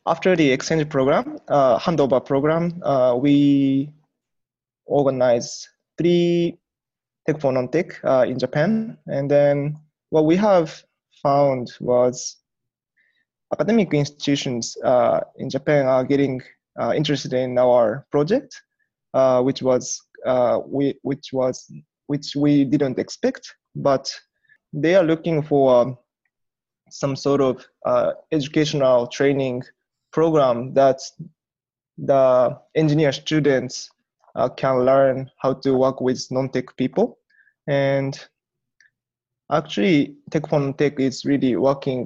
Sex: male